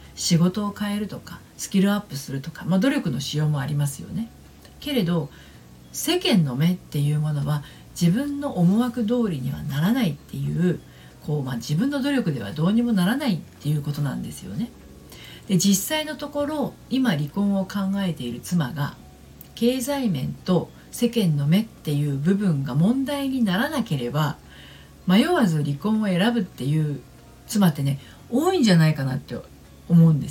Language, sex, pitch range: Japanese, female, 150-230 Hz